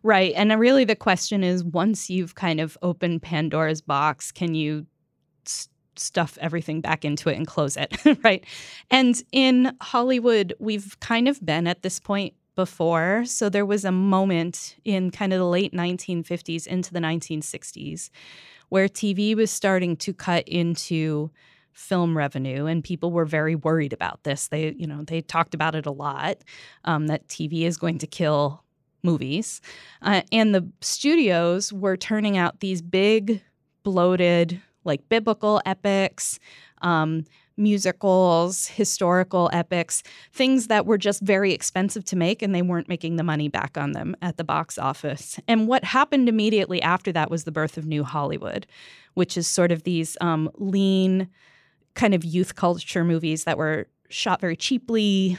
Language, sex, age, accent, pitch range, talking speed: English, female, 10-29, American, 160-200 Hz, 160 wpm